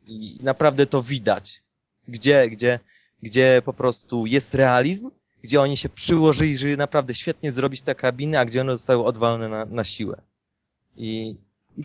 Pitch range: 115-160 Hz